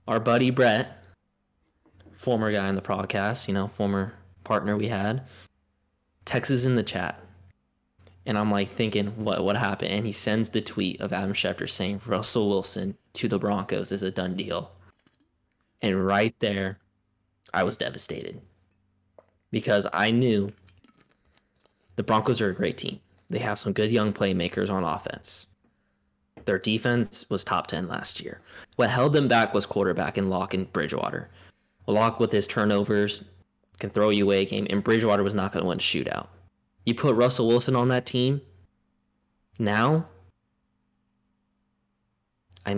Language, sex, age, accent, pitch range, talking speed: English, male, 20-39, American, 95-115 Hz, 155 wpm